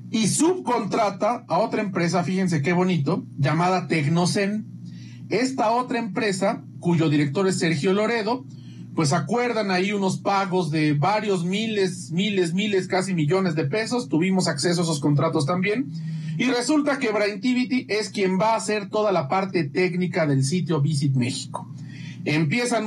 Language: Spanish